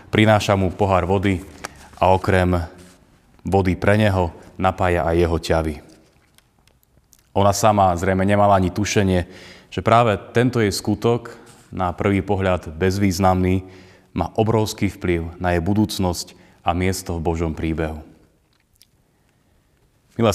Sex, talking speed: male, 120 wpm